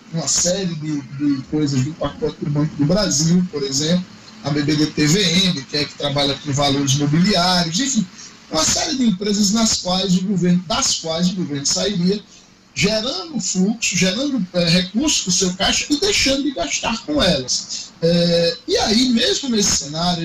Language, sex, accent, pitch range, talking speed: Portuguese, male, Brazilian, 170-220 Hz, 170 wpm